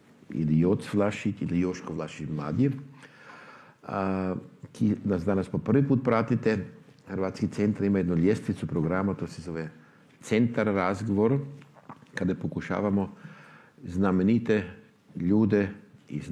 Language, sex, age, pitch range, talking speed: Croatian, male, 50-69, 95-120 Hz, 105 wpm